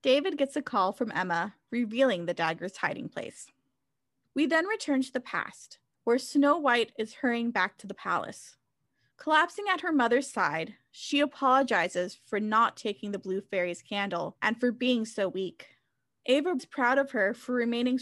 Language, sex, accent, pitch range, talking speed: English, female, American, 200-275 Hz, 170 wpm